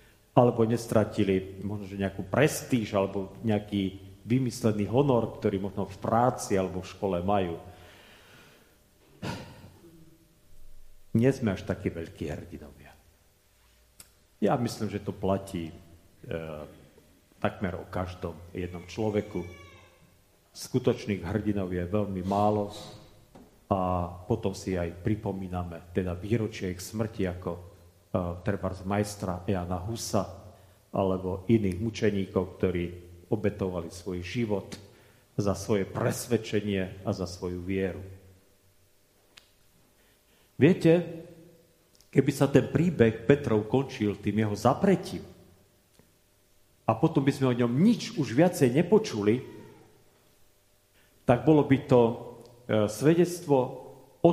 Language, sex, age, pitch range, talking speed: Slovak, male, 40-59, 95-120 Hz, 105 wpm